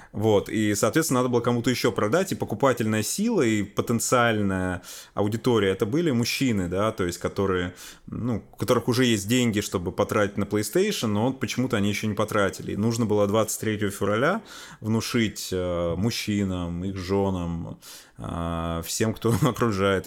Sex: male